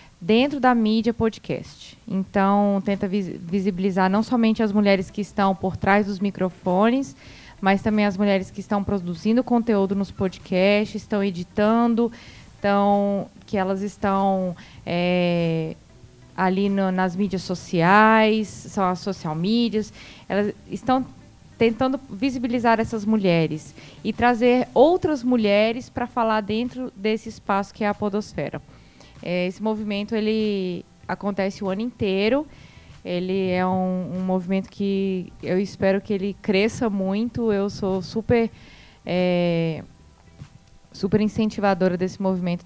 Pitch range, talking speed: 185-220 Hz, 120 wpm